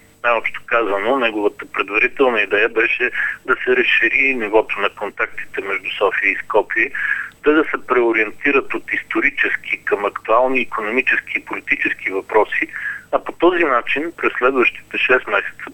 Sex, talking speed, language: male, 135 wpm, Bulgarian